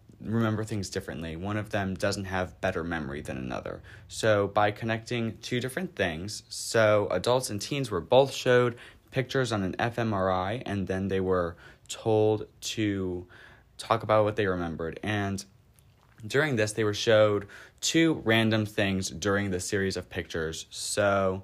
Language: English